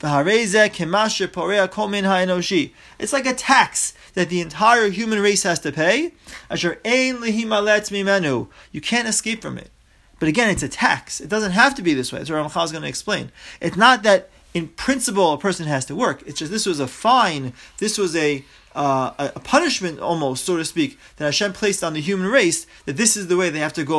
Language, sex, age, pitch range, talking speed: English, male, 30-49, 155-220 Hz, 195 wpm